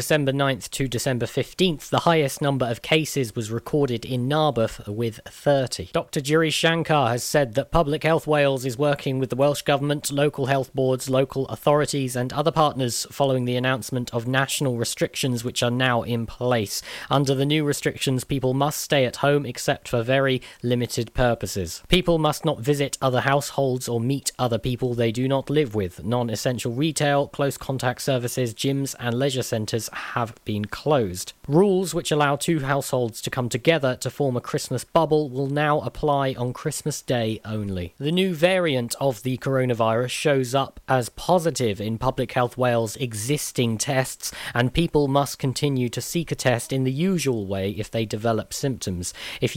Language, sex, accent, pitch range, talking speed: English, male, British, 120-145 Hz, 175 wpm